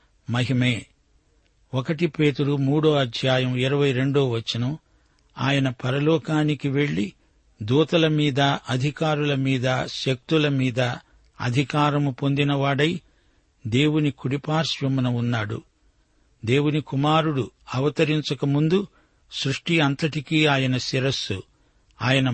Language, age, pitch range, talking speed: Telugu, 60-79, 125-150 Hz, 75 wpm